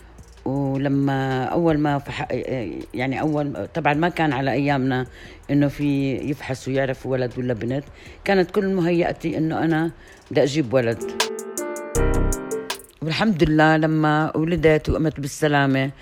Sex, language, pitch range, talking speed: female, Arabic, 140-175 Hz, 115 wpm